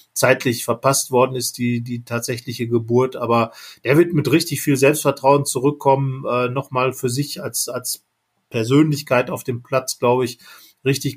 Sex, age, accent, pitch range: male, 40-59, German, 125-145 Hz